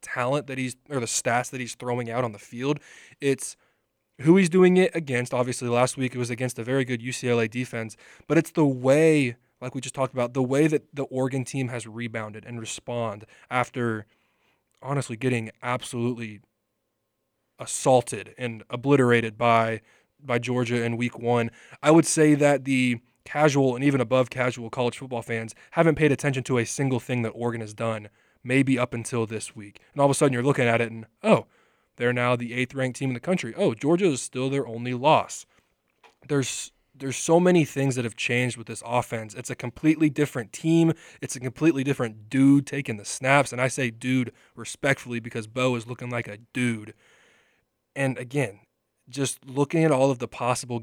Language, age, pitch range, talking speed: English, 20-39, 120-135 Hz, 190 wpm